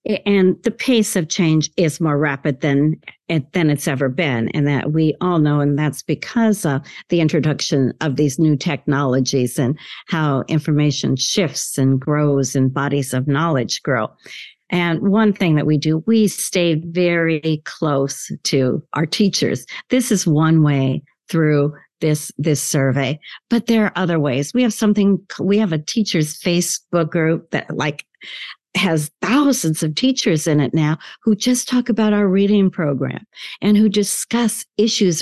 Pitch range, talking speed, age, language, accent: 150-210 Hz, 160 wpm, 50-69, English, American